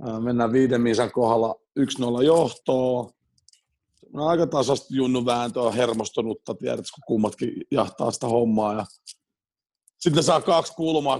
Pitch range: 120-165 Hz